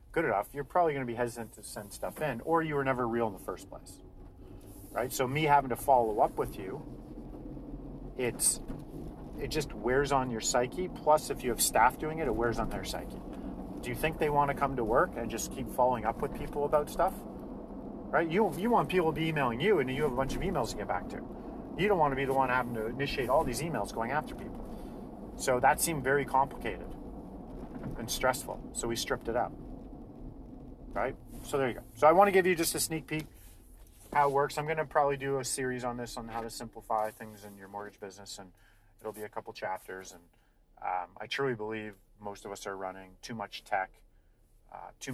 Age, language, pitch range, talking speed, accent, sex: 40-59, English, 100-140 Hz, 230 wpm, American, male